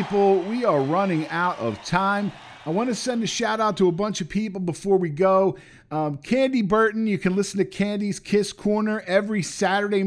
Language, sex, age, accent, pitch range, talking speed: English, male, 50-69, American, 180-215 Hz, 205 wpm